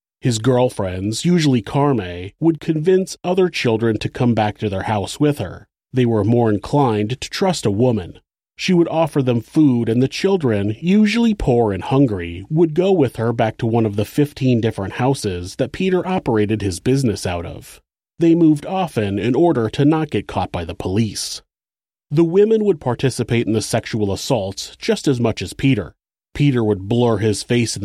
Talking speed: 185 wpm